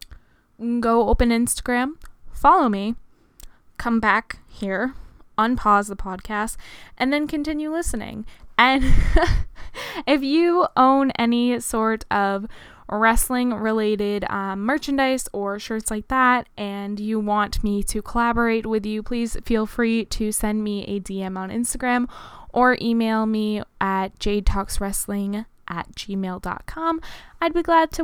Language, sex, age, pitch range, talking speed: English, female, 10-29, 210-255 Hz, 120 wpm